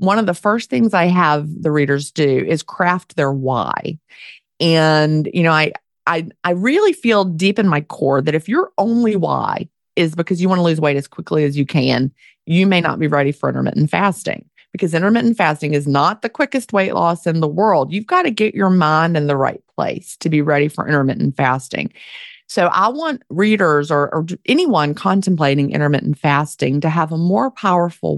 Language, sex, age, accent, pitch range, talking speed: English, female, 30-49, American, 145-190 Hz, 200 wpm